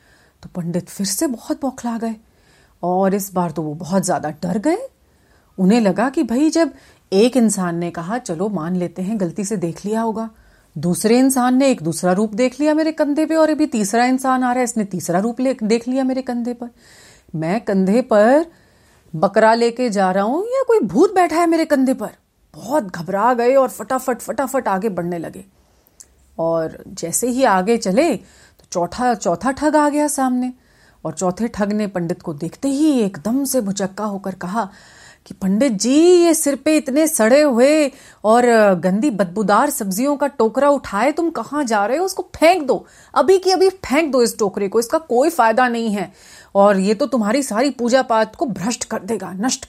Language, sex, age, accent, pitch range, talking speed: Hindi, female, 40-59, native, 190-270 Hz, 190 wpm